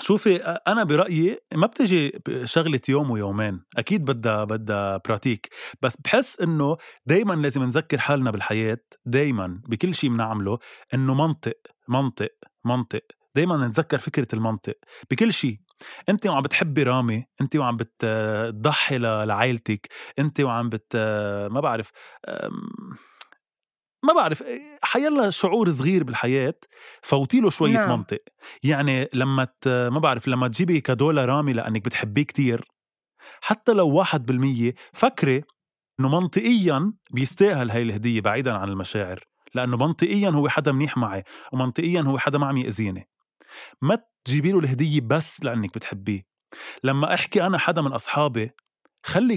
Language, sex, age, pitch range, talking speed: Arabic, male, 20-39, 115-160 Hz, 130 wpm